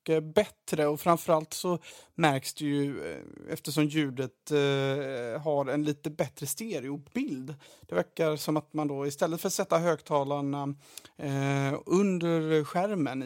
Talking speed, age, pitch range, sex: 120 wpm, 30-49, 140-170 Hz, male